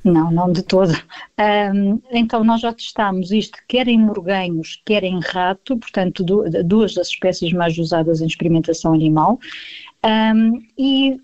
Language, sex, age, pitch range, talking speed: Portuguese, female, 50-69, 185-225 Hz, 135 wpm